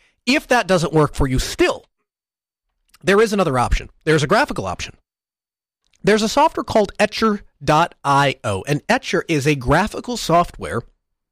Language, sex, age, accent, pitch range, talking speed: English, male, 30-49, American, 120-170 Hz, 140 wpm